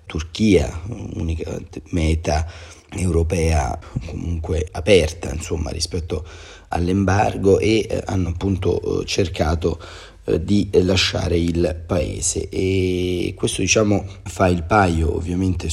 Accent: native